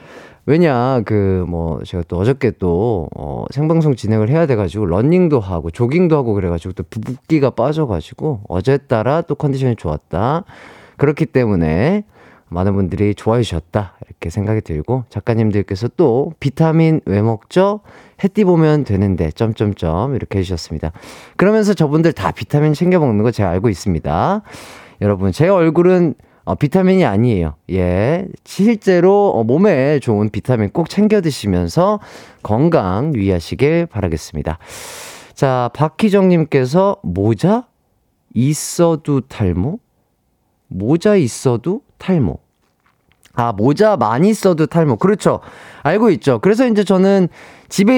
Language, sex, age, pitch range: Korean, male, 30-49, 100-165 Hz